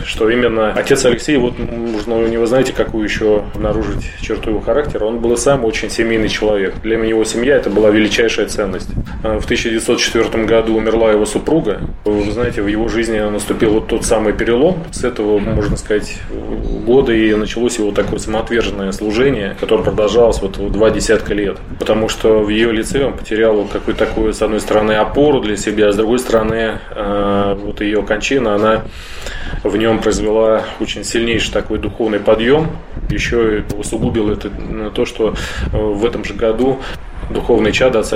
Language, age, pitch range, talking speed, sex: Russian, 20-39, 105-115 Hz, 165 wpm, male